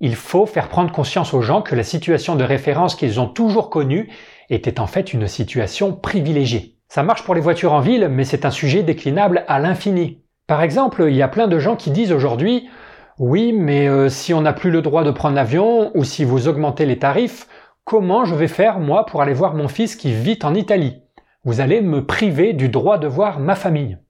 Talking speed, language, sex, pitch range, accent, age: 220 wpm, French, male, 135-195 Hz, French, 40-59